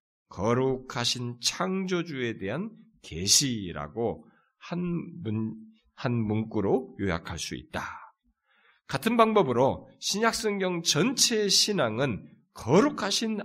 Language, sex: Korean, male